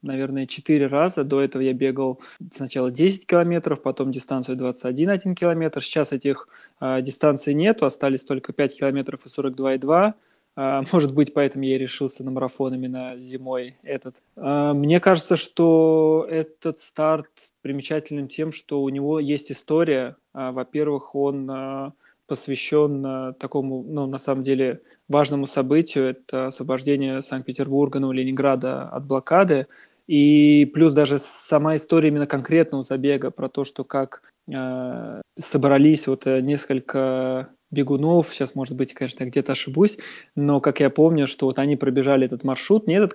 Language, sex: Russian, male